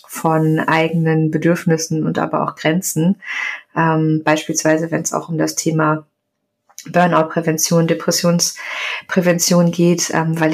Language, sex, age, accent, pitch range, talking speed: German, female, 20-39, German, 160-175 Hz, 115 wpm